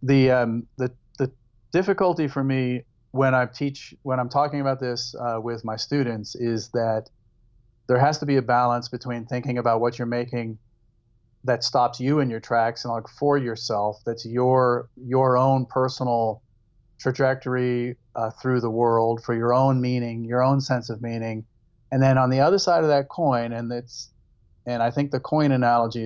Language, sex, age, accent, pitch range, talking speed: English, male, 40-59, American, 115-130 Hz, 180 wpm